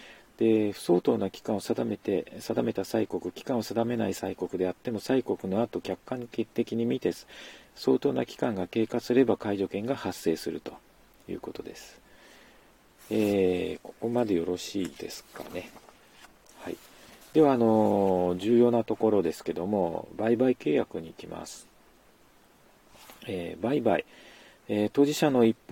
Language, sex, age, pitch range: Japanese, male, 40-59, 95-125 Hz